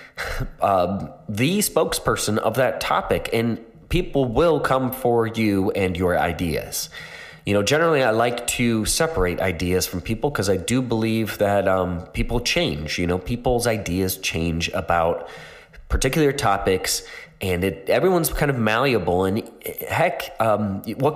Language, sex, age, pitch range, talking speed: English, male, 20-39, 95-130 Hz, 145 wpm